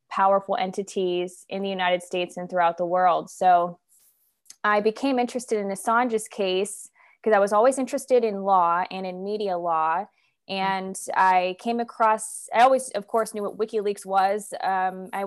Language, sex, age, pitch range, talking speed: English, female, 20-39, 185-220 Hz, 165 wpm